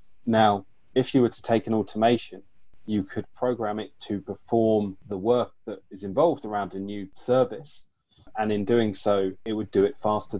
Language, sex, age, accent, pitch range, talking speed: English, male, 20-39, British, 95-110 Hz, 185 wpm